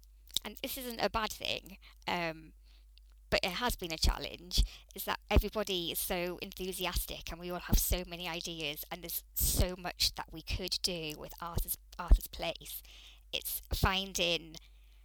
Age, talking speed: 20-39, 160 wpm